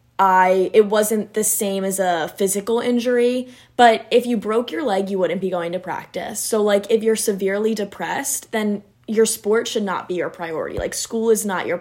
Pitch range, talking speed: 185-220 Hz, 205 wpm